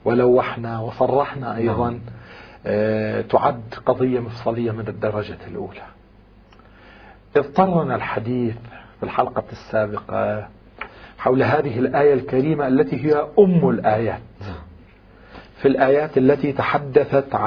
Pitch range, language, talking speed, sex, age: 105-130 Hz, Arabic, 90 wpm, male, 40-59